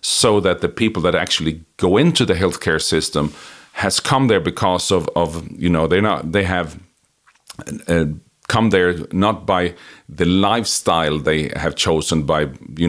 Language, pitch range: English, 85-110 Hz